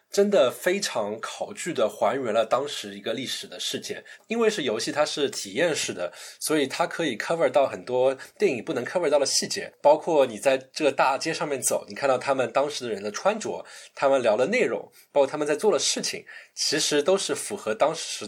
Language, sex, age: Chinese, male, 20-39